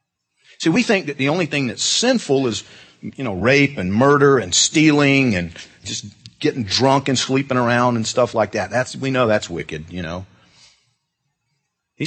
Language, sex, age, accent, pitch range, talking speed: English, male, 50-69, American, 105-135 Hz, 180 wpm